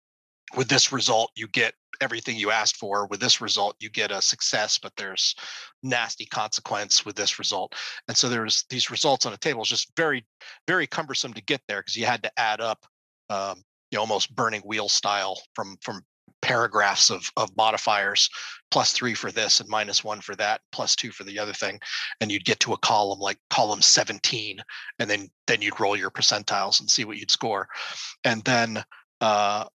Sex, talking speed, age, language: male, 195 wpm, 30-49, English